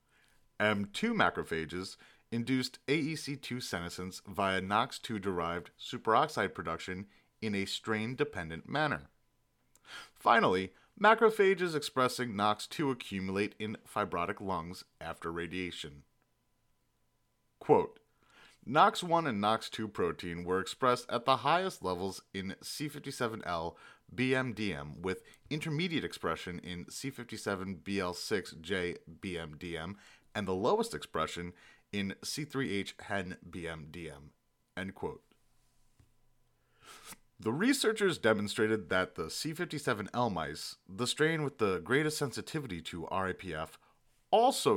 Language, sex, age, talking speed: English, male, 30-49, 90 wpm